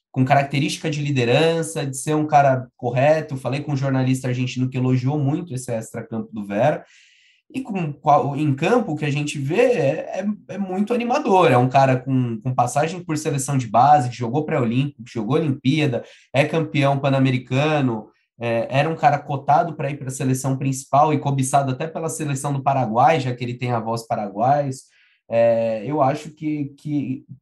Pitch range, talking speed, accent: 120-155 Hz, 180 wpm, Brazilian